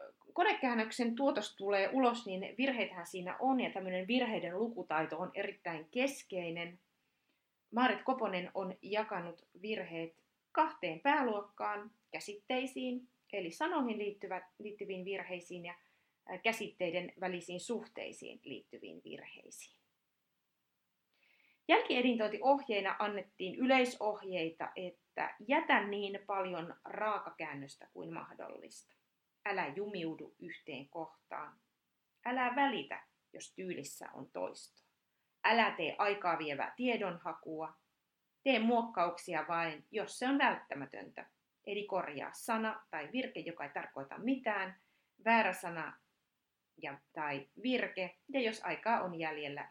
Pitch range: 180-245 Hz